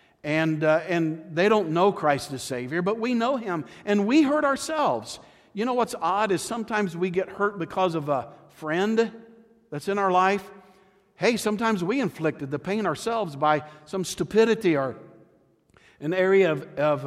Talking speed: 170 wpm